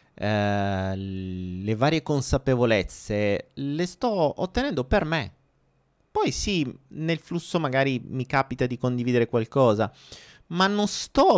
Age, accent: 30-49, native